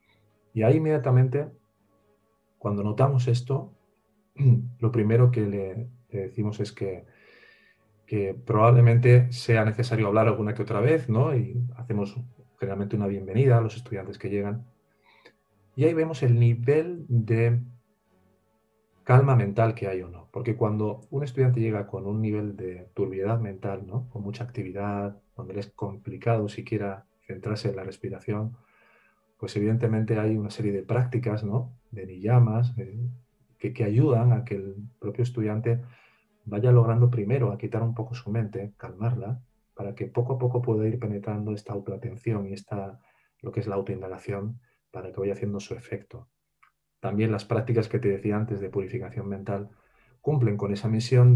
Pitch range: 105-120 Hz